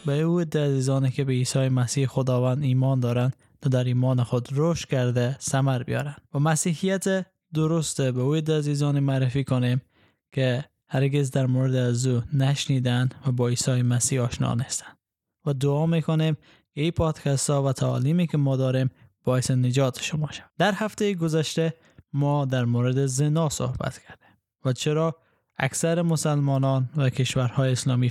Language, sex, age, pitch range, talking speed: Persian, male, 10-29, 125-150 Hz, 150 wpm